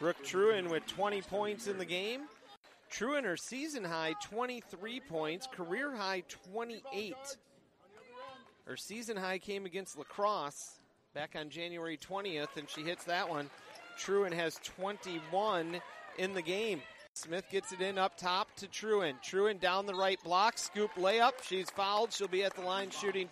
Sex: male